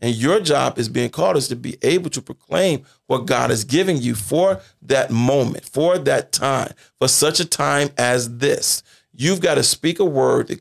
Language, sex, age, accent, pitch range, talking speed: English, male, 40-59, American, 125-170 Hz, 205 wpm